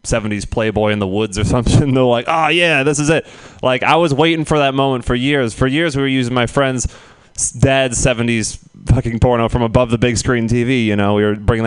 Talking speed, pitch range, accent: 230 wpm, 110-140 Hz, American